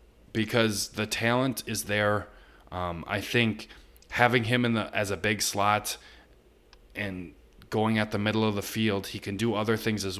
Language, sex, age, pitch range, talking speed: English, male, 20-39, 100-115 Hz, 175 wpm